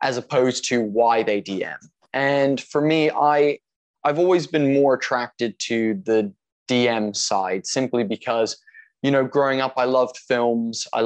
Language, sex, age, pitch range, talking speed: English, male, 20-39, 120-155 Hz, 155 wpm